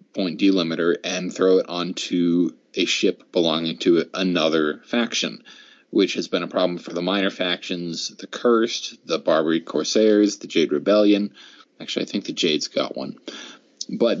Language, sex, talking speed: English, male, 155 wpm